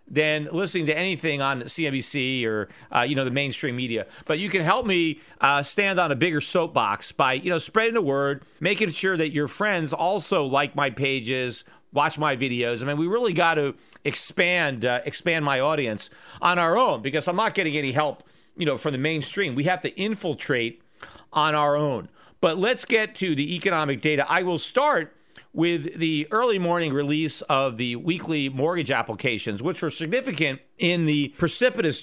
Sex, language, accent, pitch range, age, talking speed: male, English, American, 140-170 Hz, 40-59, 185 wpm